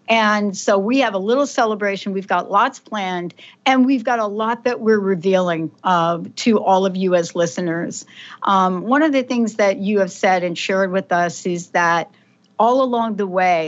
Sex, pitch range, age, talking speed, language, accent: female, 185-230 Hz, 60-79, 195 wpm, English, American